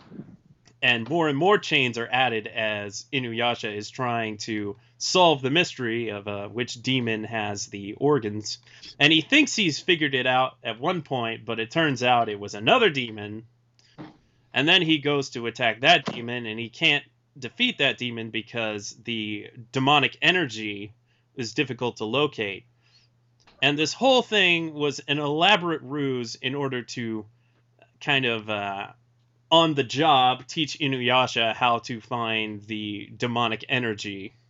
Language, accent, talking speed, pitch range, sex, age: English, American, 150 wpm, 115-140 Hz, male, 30-49